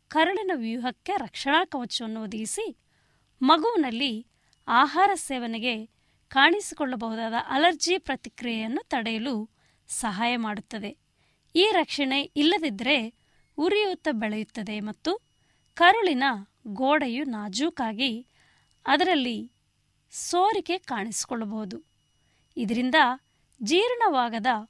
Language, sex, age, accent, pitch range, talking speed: Kannada, female, 20-39, native, 235-320 Hz, 70 wpm